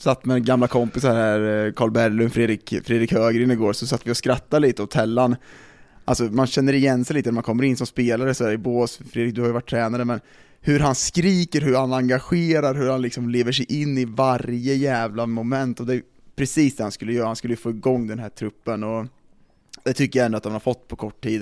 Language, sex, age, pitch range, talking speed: Swedish, male, 20-39, 115-125 Hz, 240 wpm